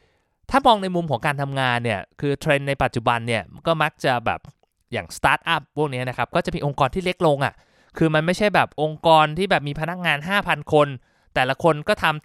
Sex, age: male, 20-39